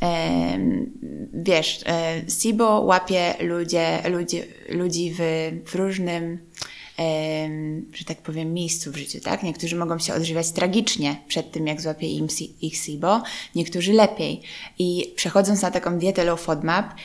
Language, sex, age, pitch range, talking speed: Polish, female, 20-39, 160-190 Hz, 135 wpm